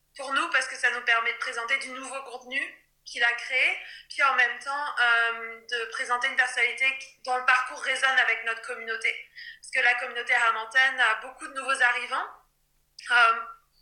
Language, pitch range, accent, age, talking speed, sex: French, 240-275 Hz, French, 20-39, 185 wpm, female